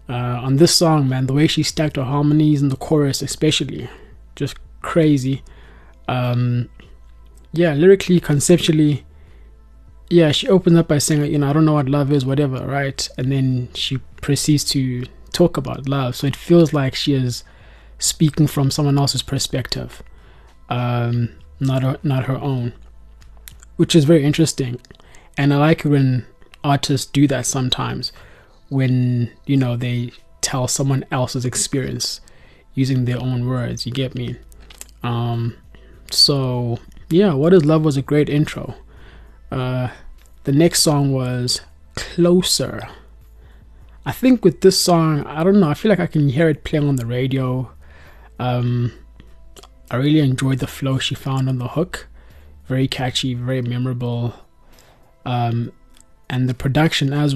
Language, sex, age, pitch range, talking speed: English, male, 20-39, 120-150 Hz, 150 wpm